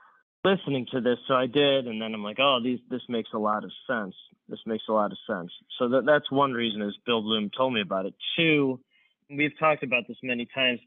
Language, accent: English, American